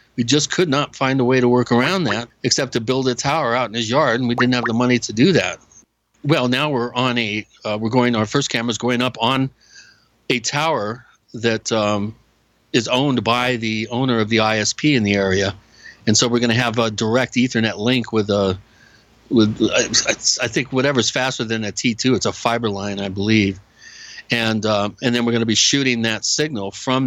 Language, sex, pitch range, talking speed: English, male, 105-125 Hz, 220 wpm